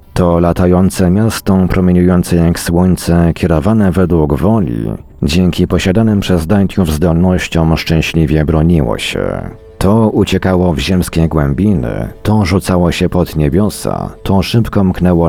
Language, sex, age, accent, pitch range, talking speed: Polish, male, 50-69, native, 80-100 Hz, 120 wpm